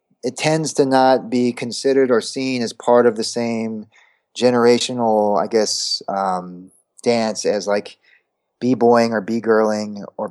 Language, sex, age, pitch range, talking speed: English, male, 30-49, 110-135 Hz, 140 wpm